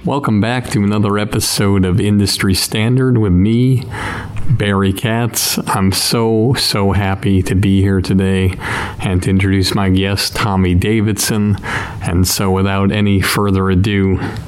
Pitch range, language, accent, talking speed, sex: 95-105 Hz, English, American, 135 wpm, male